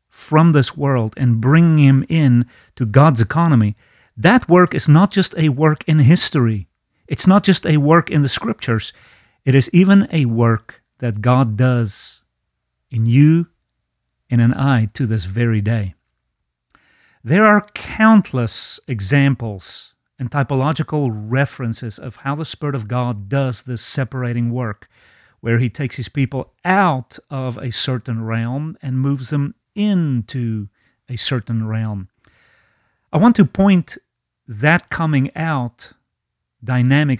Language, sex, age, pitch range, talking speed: English, male, 40-59, 115-150 Hz, 140 wpm